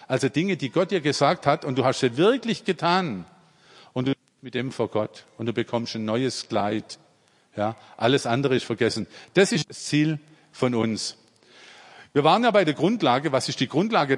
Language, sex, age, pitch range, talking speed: German, male, 50-69, 120-170 Hz, 200 wpm